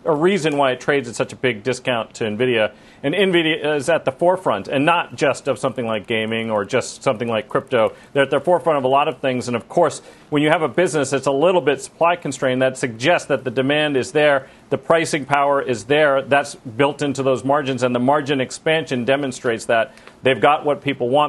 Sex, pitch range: male, 130-165 Hz